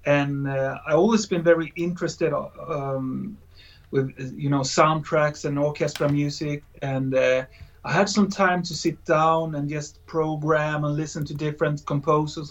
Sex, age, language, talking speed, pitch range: male, 30-49, English, 155 wpm, 135-165 Hz